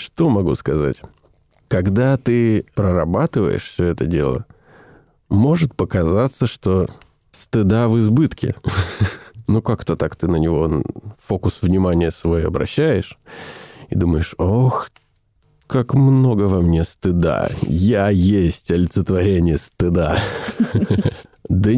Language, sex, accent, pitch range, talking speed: Russian, male, native, 85-110 Hz, 105 wpm